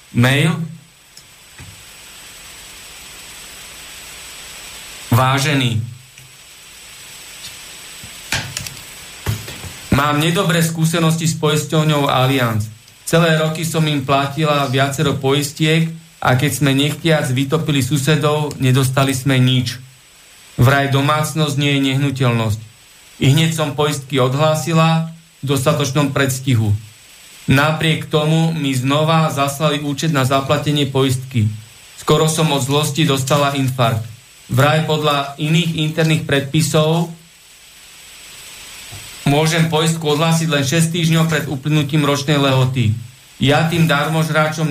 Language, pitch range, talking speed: Slovak, 135-155 Hz, 95 wpm